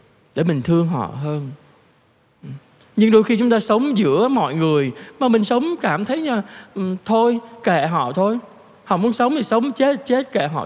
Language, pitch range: Vietnamese, 170-230 Hz